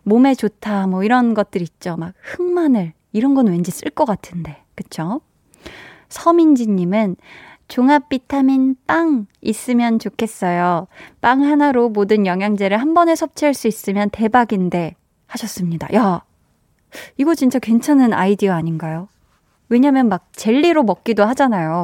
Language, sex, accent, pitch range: Korean, female, native, 195-255 Hz